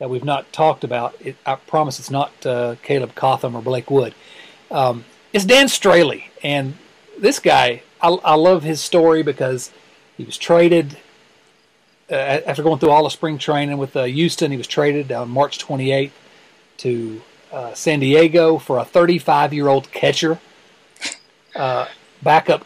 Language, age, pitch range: English, 40-59, 135-170 Hz